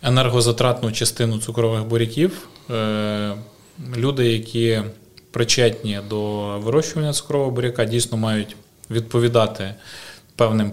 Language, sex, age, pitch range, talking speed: Ukrainian, male, 20-39, 105-125 Hz, 85 wpm